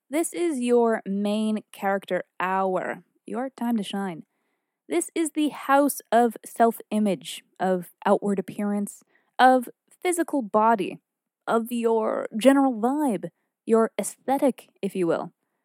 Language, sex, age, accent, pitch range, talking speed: English, female, 20-39, American, 205-275 Hz, 120 wpm